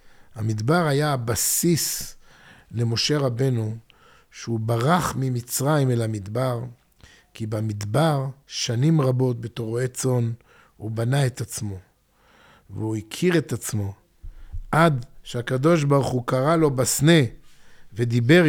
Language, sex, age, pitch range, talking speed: Hebrew, male, 50-69, 120-175 Hz, 105 wpm